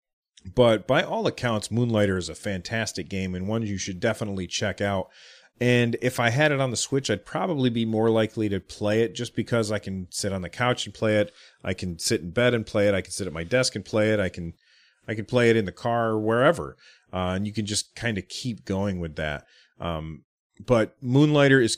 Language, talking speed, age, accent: English, 235 wpm, 30-49, American